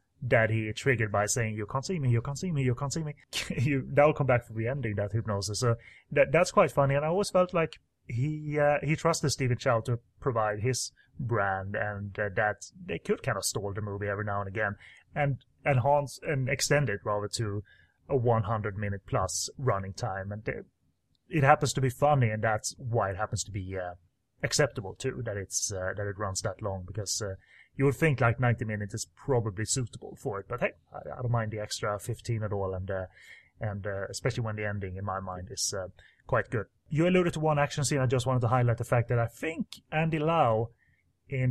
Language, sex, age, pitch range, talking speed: English, male, 30-49, 105-140 Hz, 225 wpm